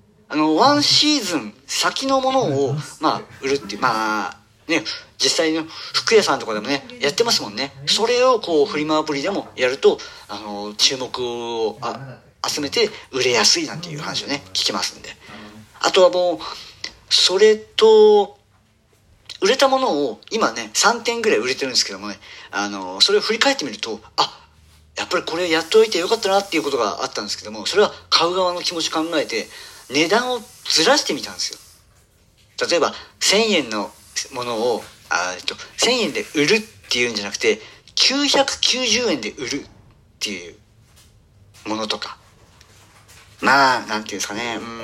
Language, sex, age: Japanese, male, 40-59